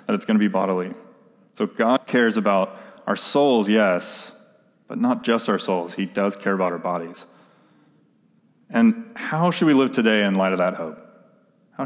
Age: 30-49